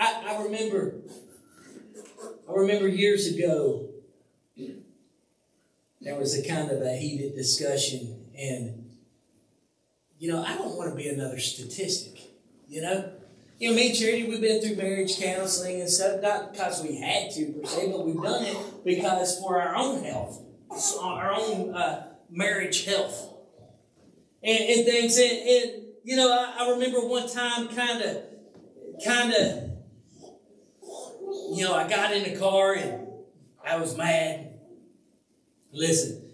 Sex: male